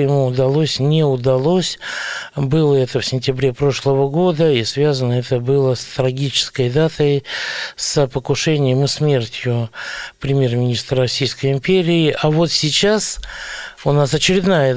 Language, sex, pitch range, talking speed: Russian, male, 125-150 Hz, 120 wpm